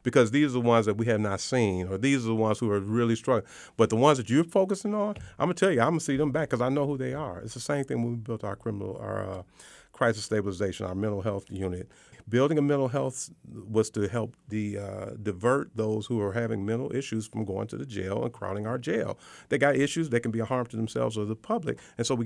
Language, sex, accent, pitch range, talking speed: English, male, American, 105-125 Hz, 270 wpm